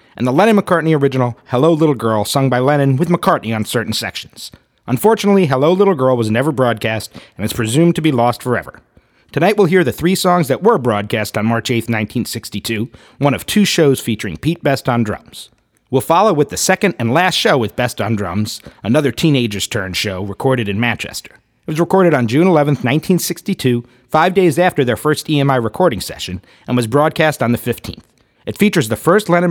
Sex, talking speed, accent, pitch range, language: male, 195 wpm, American, 115-165 Hz, English